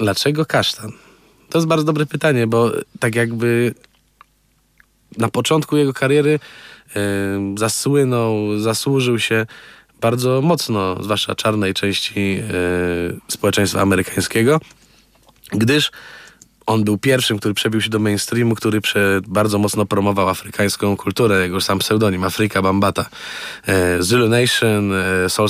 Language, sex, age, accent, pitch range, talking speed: Polish, male, 20-39, native, 100-125 Hz, 110 wpm